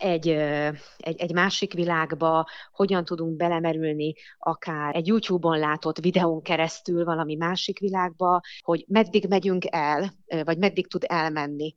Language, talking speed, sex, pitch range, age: Hungarian, 125 wpm, female, 155-180 Hz, 30-49